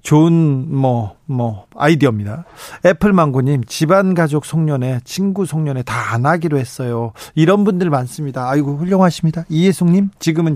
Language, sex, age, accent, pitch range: Korean, male, 40-59, native, 135-180 Hz